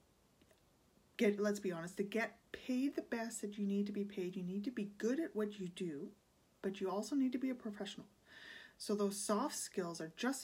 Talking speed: 215 wpm